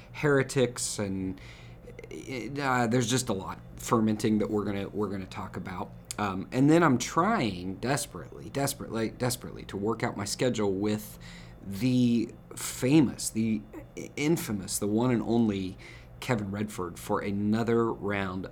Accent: American